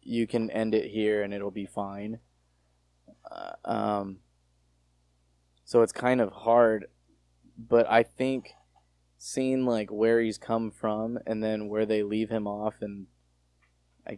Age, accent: 20-39, American